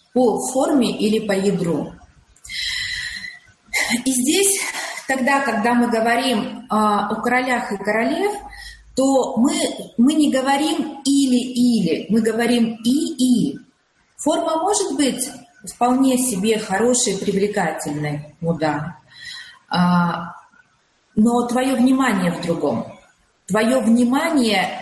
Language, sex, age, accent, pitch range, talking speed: Russian, female, 30-49, native, 205-280 Hz, 95 wpm